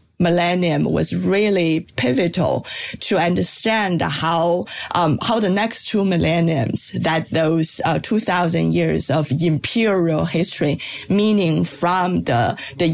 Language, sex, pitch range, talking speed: English, female, 160-195 Hz, 120 wpm